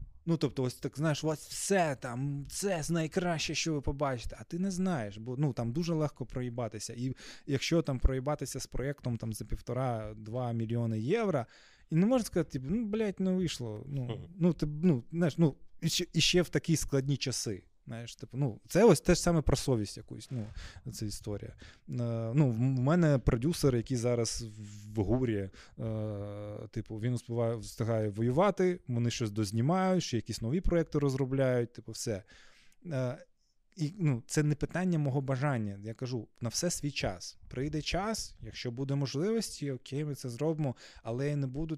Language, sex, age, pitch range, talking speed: Ukrainian, male, 20-39, 115-150 Hz, 170 wpm